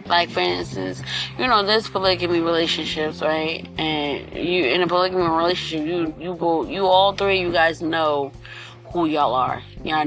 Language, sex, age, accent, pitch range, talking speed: English, female, 20-39, American, 155-175 Hz, 165 wpm